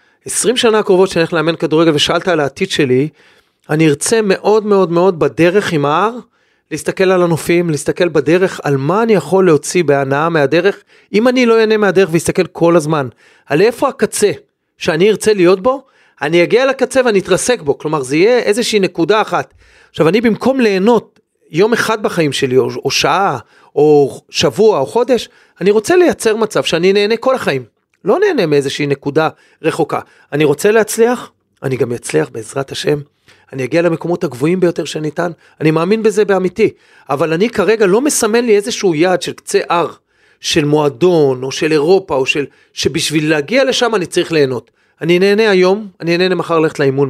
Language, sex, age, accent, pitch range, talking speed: Hebrew, male, 40-59, native, 155-220 Hz, 170 wpm